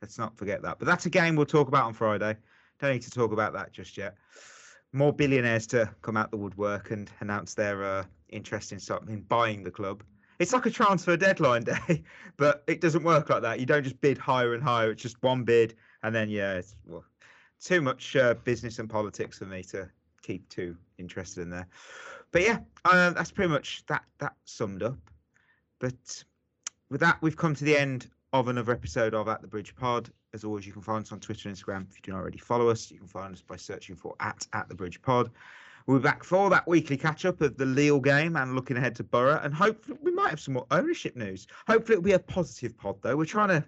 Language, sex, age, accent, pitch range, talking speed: English, male, 30-49, British, 105-145 Hz, 235 wpm